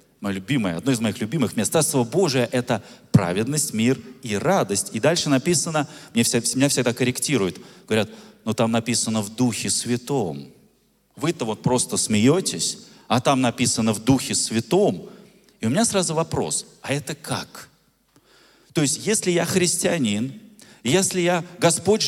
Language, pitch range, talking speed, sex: Russian, 115-170 Hz, 145 wpm, male